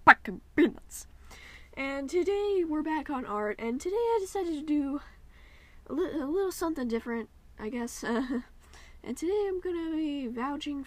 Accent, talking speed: American, 155 wpm